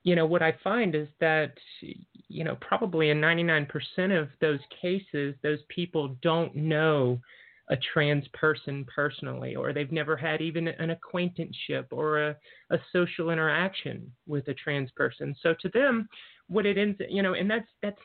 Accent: American